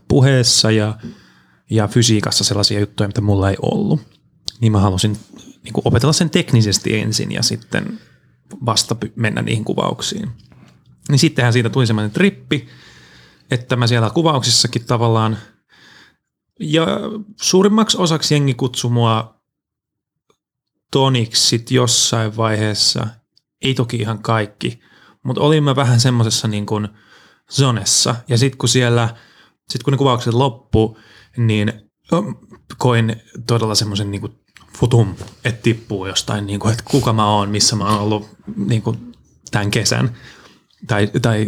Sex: male